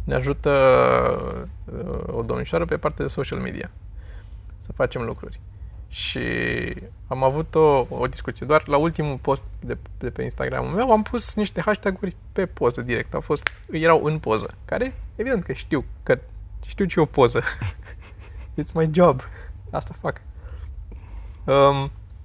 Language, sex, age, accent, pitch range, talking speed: Romanian, male, 20-39, native, 95-165 Hz, 150 wpm